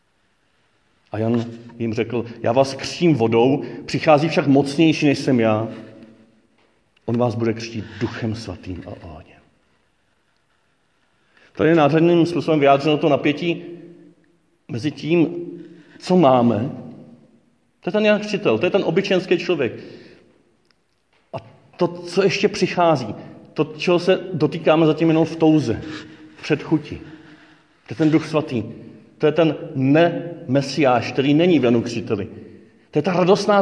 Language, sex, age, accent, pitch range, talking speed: Czech, male, 40-59, native, 125-175 Hz, 135 wpm